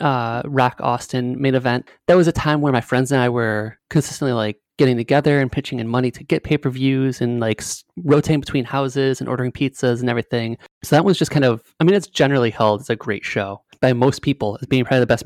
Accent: American